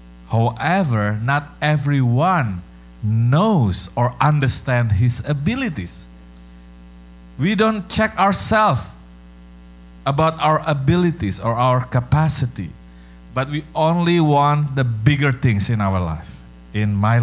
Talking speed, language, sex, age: 105 wpm, English, male, 50-69